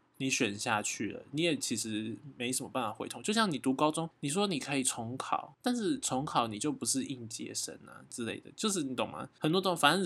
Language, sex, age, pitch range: Chinese, male, 20-39, 115-145 Hz